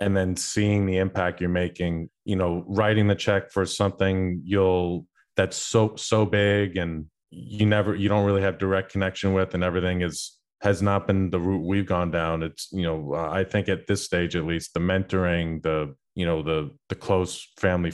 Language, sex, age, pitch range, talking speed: English, male, 30-49, 85-100 Hz, 195 wpm